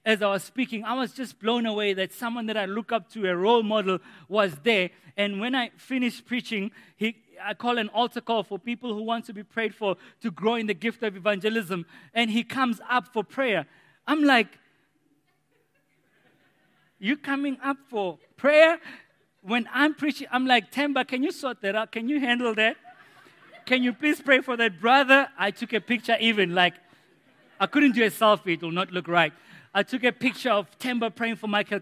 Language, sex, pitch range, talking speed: English, male, 190-240 Hz, 200 wpm